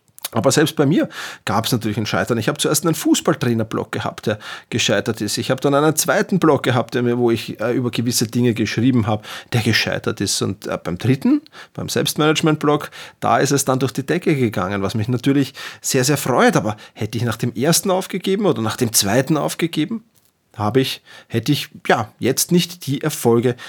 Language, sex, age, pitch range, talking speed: German, male, 30-49, 115-160 Hz, 190 wpm